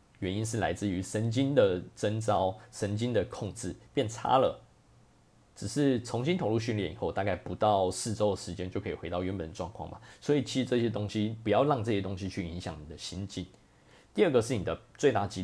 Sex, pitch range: male, 95-120 Hz